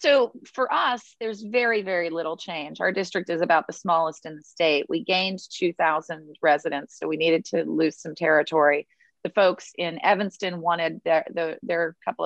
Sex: female